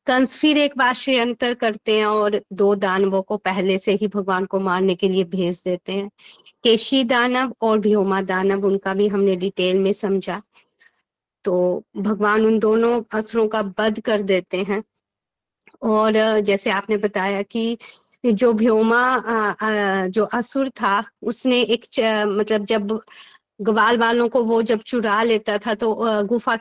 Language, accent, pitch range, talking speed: Hindi, native, 210-255 Hz, 150 wpm